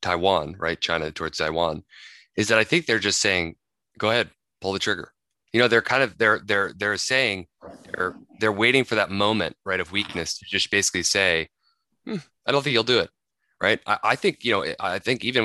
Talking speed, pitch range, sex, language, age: 215 wpm, 90-115 Hz, male, English, 20-39